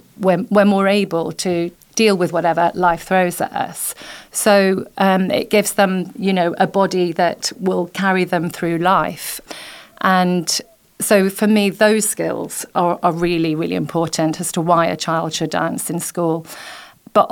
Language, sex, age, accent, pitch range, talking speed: English, female, 40-59, British, 170-190 Hz, 165 wpm